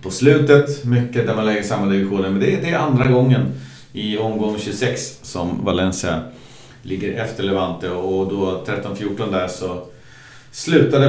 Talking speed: 150 wpm